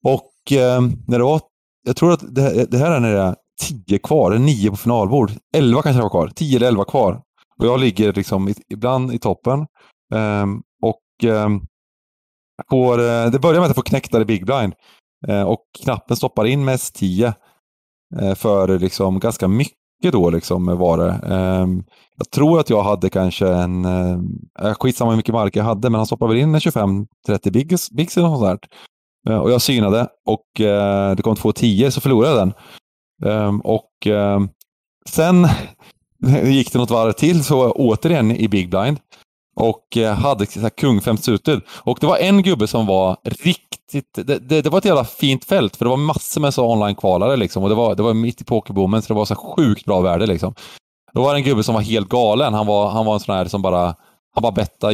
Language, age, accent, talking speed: English, 30-49, Swedish, 195 wpm